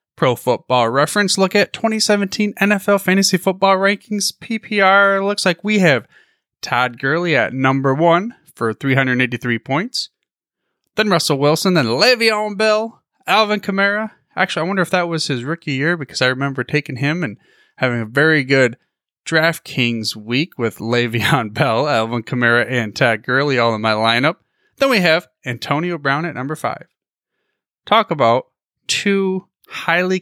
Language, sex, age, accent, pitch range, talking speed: English, male, 30-49, American, 125-195 Hz, 150 wpm